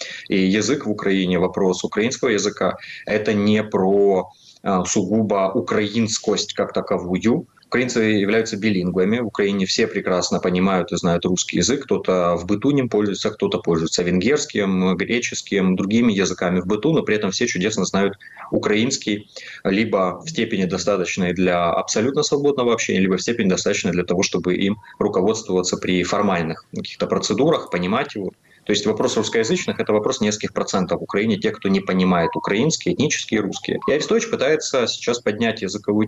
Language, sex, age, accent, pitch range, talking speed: Russian, male, 20-39, native, 95-110 Hz, 155 wpm